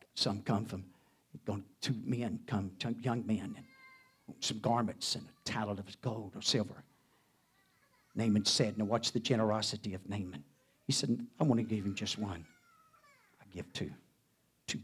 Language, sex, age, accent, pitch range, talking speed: English, male, 60-79, American, 95-135 Hz, 160 wpm